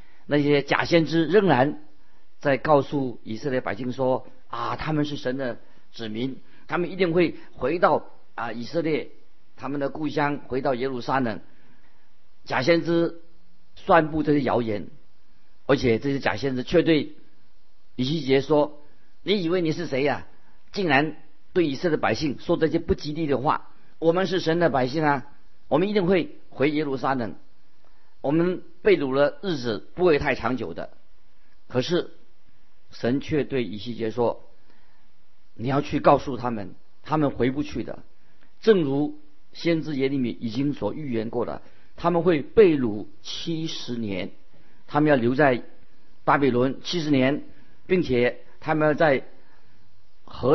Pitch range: 125-165 Hz